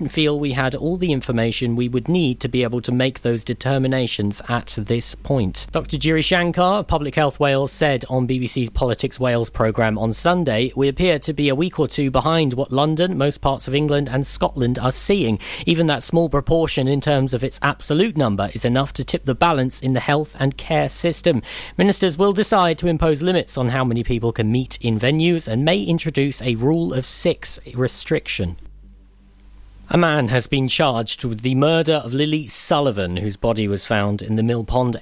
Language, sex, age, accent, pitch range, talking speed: English, male, 40-59, British, 115-150 Hz, 200 wpm